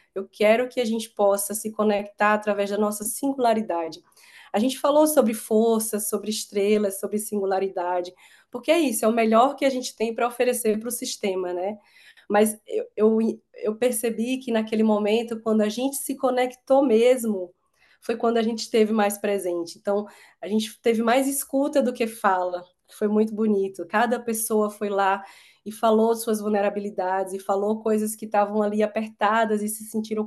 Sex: female